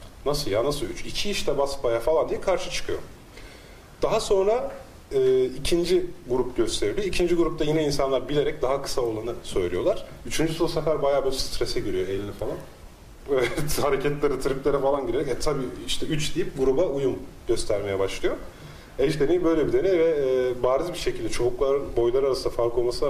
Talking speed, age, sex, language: 165 wpm, 30-49, male, Turkish